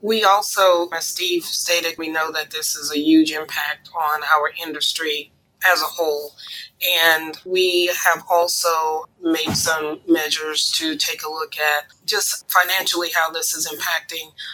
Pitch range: 165-190 Hz